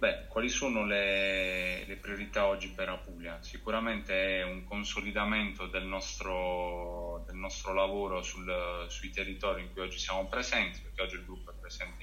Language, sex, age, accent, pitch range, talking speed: Italian, male, 20-39, native, 90-100 Hz, 145 wpm